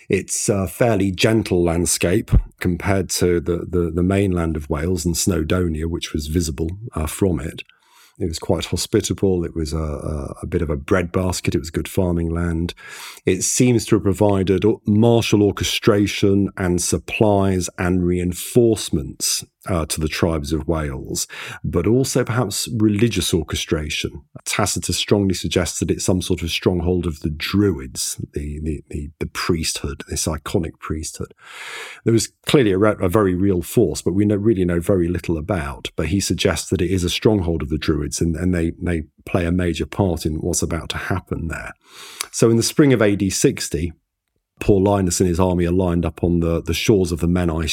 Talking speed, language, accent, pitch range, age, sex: 180 wpm, English, British, 85-100 Hz, 40-59, male